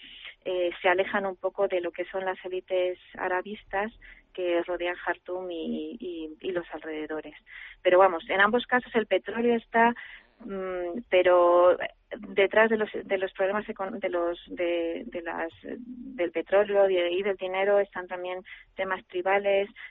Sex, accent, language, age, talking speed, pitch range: female, Spanish, Spanish, 20-39, 150 wpm, 175-195 Hz